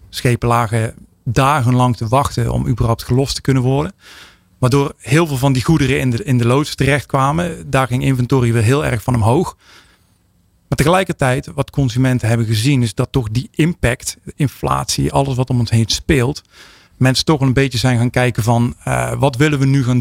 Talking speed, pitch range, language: 185 wpm, 115-135 Hz, Dutch